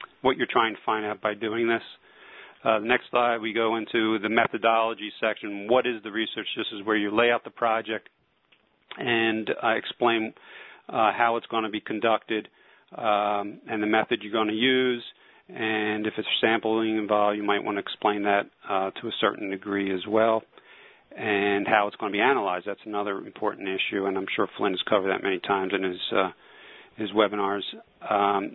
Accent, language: American, English